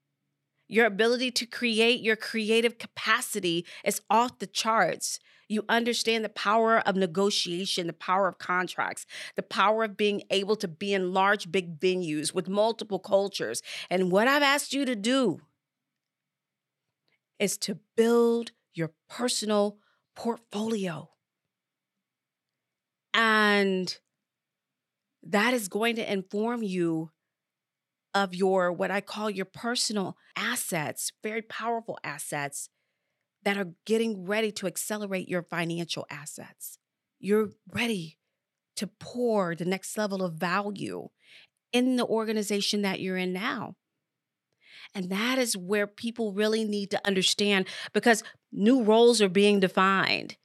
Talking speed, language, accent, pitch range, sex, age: 125 wpm, English, American, 185-225 Hz, female, 40-59